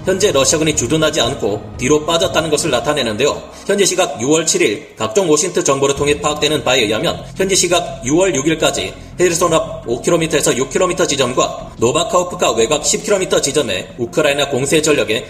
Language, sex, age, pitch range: Korean, male, 30-49, 145-180 Hz